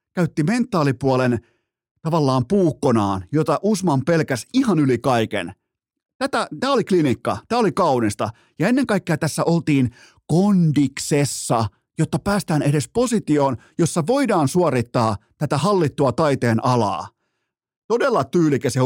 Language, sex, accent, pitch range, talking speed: Finnish, male, native, 120-170 Hz, 115 wpm